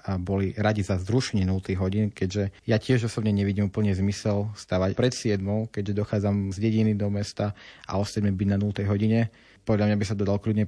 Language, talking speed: Slovak, 195 wpm